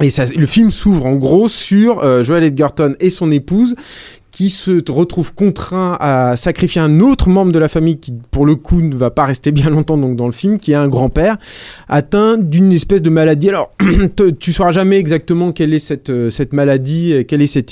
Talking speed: 215 wpm